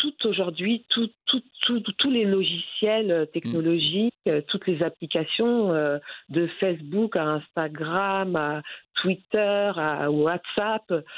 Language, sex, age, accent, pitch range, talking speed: French, female, 50-69, French, 165-220 Hz, 100 wpm